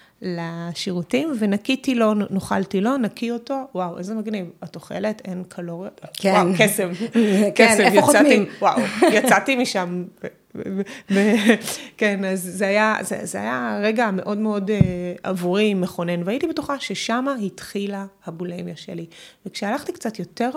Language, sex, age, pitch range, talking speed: Hebrew, female, 20-39, 180-225 Hz, 115 wpm